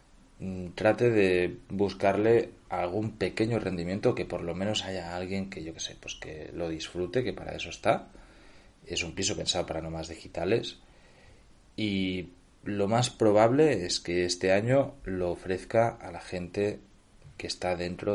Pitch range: 85-100 Hz